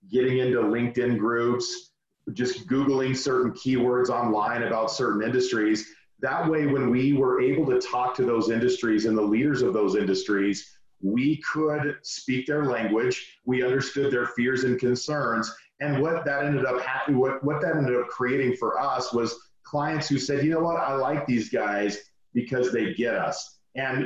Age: 40-59